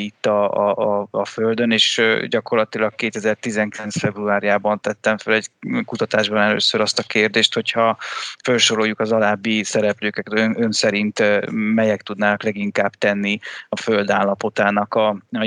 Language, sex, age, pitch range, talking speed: Hungarian, male, 20-39, 100-110 Hz, 130 wpm